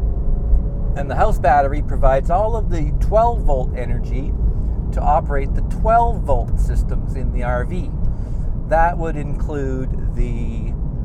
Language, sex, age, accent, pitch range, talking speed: English, male, 50-69, American, 95-145 Hz, 130 wpm